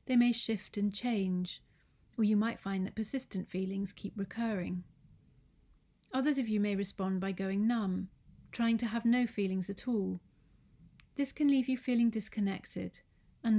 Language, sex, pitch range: English, female, 190-240 Hz